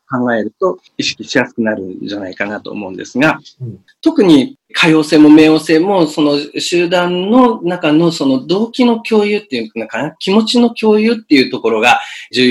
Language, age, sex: Japanese, 40-59, male